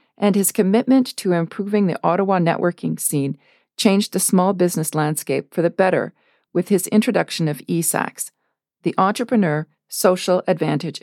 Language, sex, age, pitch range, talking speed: English, female, 40-59, 165-215 Hz, 140 wpm